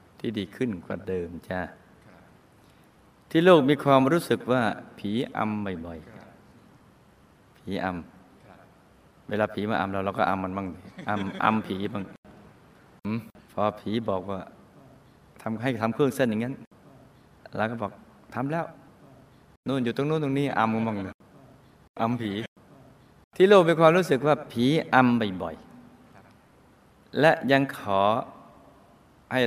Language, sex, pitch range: Thai, male, 95-125 Hz